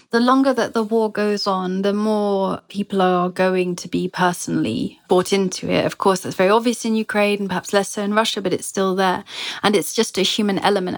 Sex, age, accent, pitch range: female, 30-49, British, 180-205 Hz